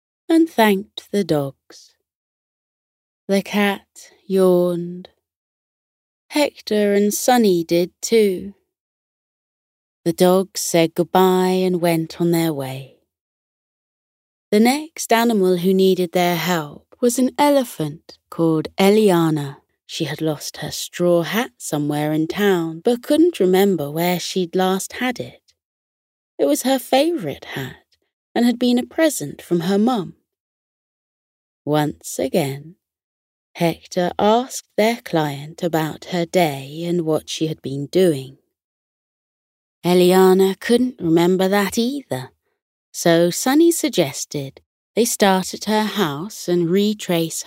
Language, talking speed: English, 120 wpm